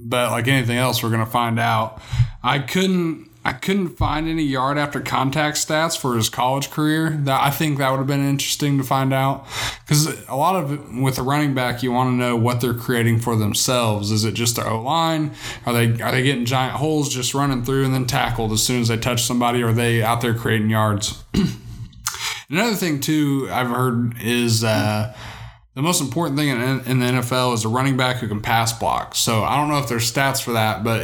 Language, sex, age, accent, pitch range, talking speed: English, male, 20-39, American, 115-140 Hz, 225 wpm